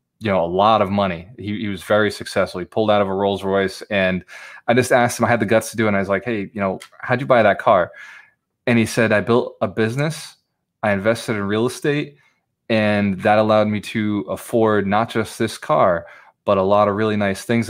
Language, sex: English, male